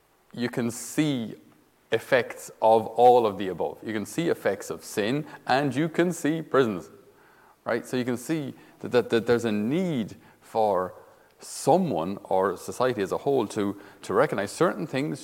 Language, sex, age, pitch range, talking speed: English, male, 30-49, 115-150 Hz, 170 wpm